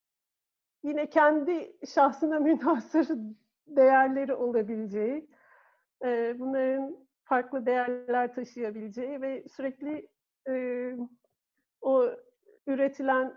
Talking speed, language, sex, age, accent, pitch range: 65 wpm, Turkish, female, 50-69, native, 235-285 Hz